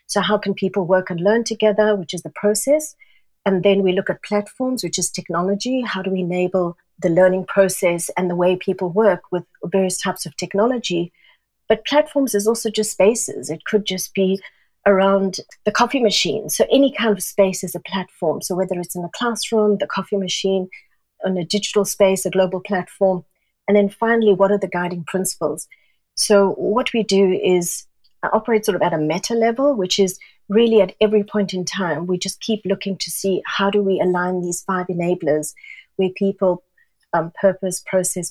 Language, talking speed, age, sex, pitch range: English, 195 wpm, 40-59, female, 180-210 Hz